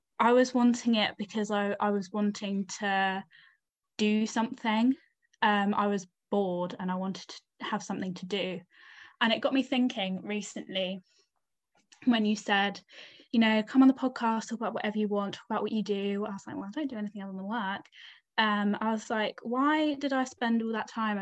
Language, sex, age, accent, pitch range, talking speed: English, female, 10-29, British, 200-235 Hz, 200 wpm